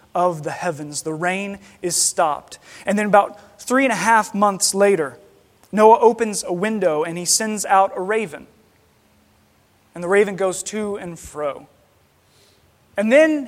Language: English